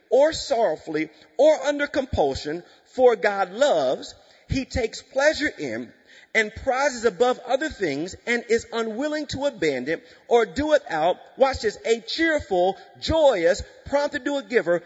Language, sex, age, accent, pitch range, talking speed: English, male, 40-59, American, 200-275 Hz, 140 wpm